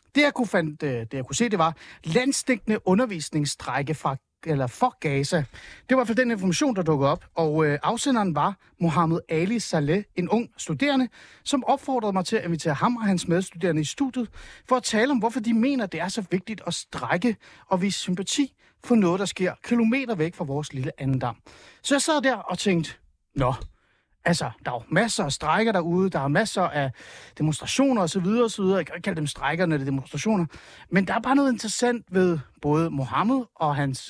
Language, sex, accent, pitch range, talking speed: Danish, male, native, 155-225 Hz, 195 wpm